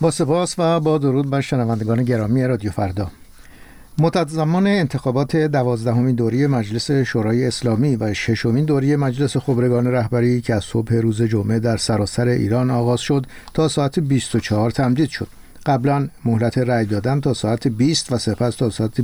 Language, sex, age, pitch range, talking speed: Persian, male, 60-79, 115-145 Hz, 155 wpm